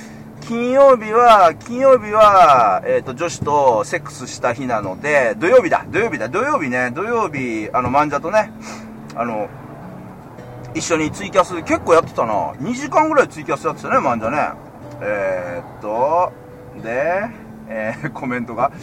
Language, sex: Japanese, male